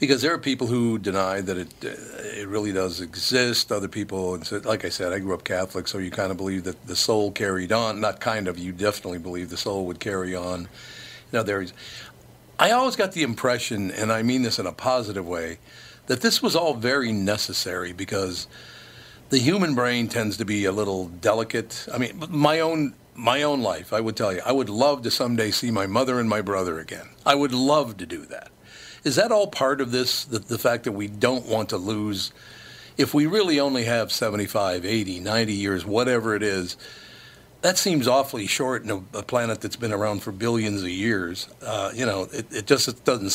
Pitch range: 95-125 Hz